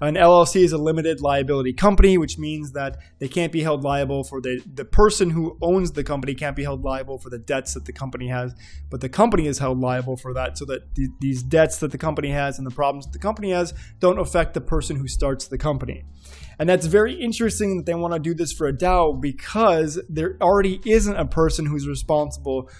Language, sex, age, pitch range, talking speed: English, male, 20-39, 130-180 Hz, 225 wpm